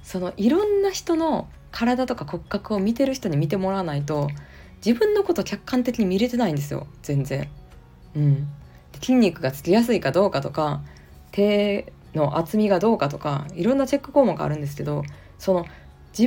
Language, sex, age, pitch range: Japanese, female, 20-39, 145-235 Hz